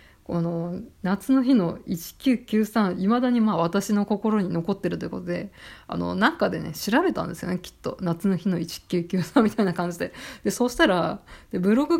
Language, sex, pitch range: Japanese, female, 175-230 Hz